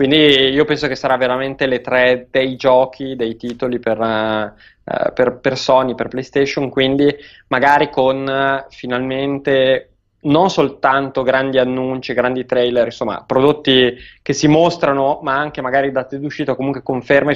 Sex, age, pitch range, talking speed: male, 20-39, 125-145 Hz, 145 wpm